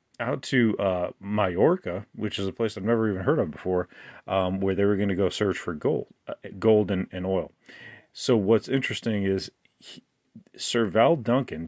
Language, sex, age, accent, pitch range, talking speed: English, male, 30-49, American, 100-120 Hz, 190 wpm